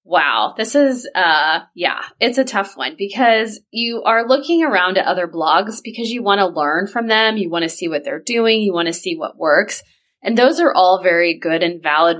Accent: American